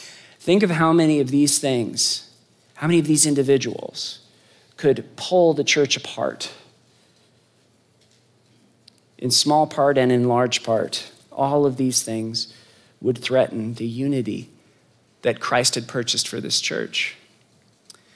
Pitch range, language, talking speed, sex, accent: 120-150 Hz, English, 130 wpm, male, American